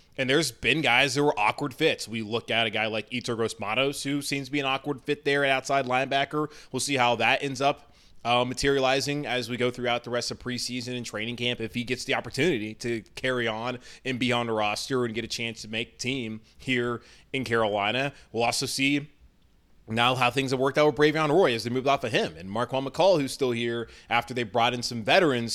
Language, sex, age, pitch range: English, male, 20-39, 110-135 Hz